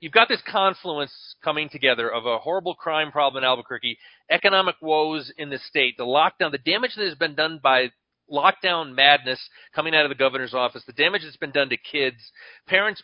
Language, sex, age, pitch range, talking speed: English, male, 40-59, 130-165 Hz, 200 wpm